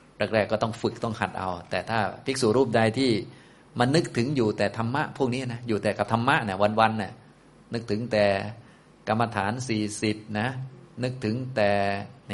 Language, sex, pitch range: Thai, male, 100-120 Hz